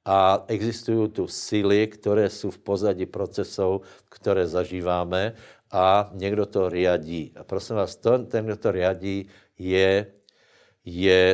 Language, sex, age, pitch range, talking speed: Slovak, male, 60-79, 95-115 Hz, 130 wpm